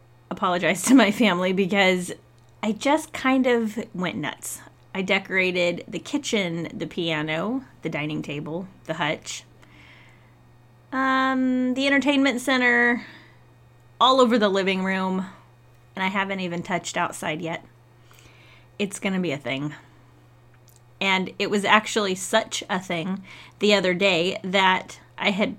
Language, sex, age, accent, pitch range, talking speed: English, female, 20-39, American, 170-230 Hz, 135 wpm